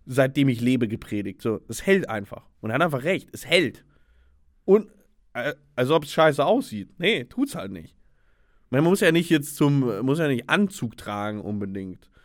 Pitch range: 115-150 Hz